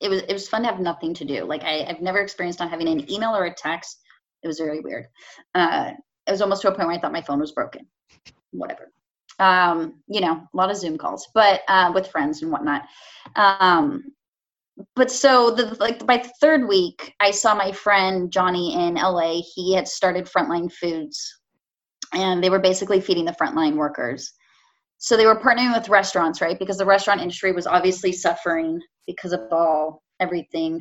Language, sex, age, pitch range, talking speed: English, female, 20-39, 170-210 Hz, 195 wpm